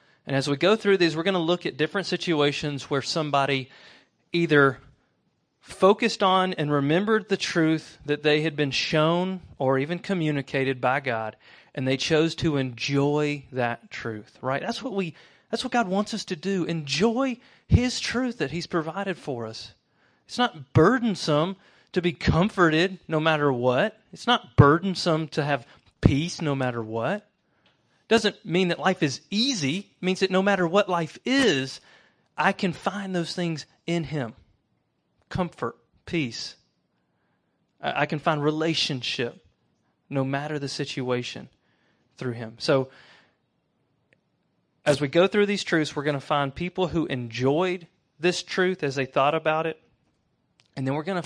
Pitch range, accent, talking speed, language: 135-180 Hz, American, 155 wpm, English